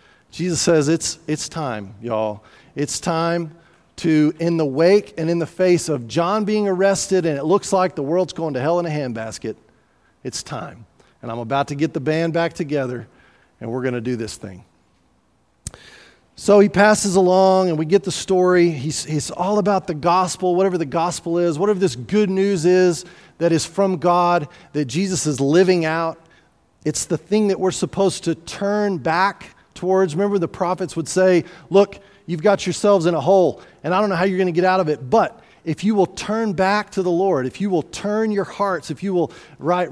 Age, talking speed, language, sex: 40-59, 205 wpm, English, male